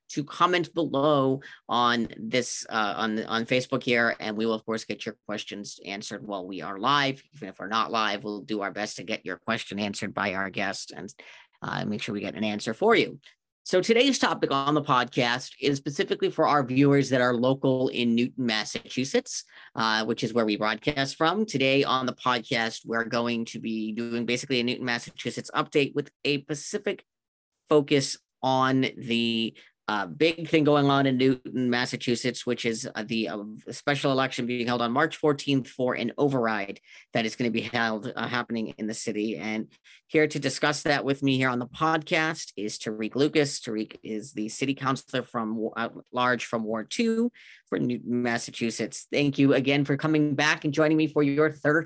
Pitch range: 115-145 Hz